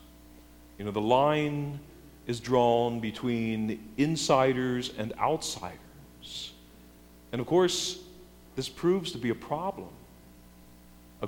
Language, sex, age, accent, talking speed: English, male, 50-69, American, 105 wpm